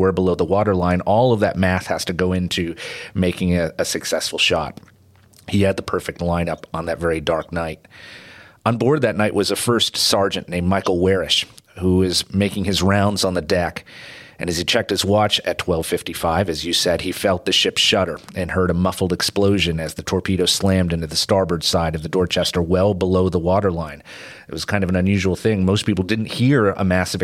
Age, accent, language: 30-49, American, English